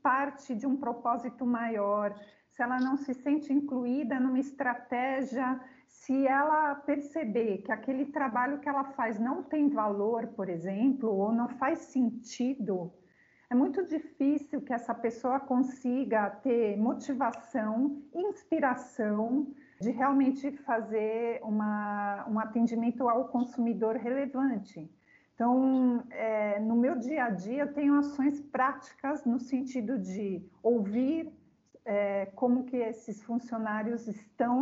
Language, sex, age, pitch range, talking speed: Portuguese, female, 50-69, 220-265 Hz, 120 wpm